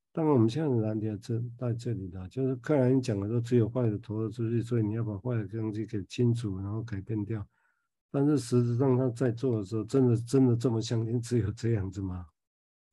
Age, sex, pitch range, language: 50-69, male, 105-125 Hz, Chinese